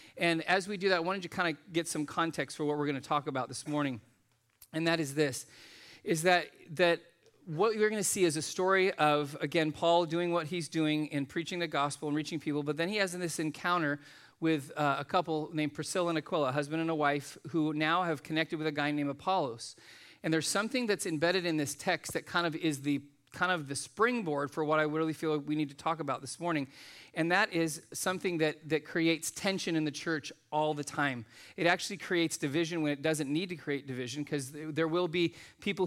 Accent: American